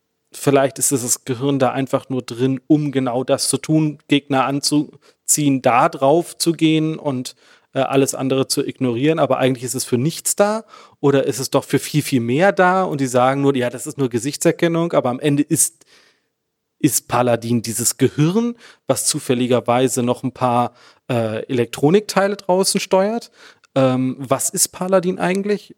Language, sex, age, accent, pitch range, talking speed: German, male, 30-49, German, 130-160 Hz, 170 wpm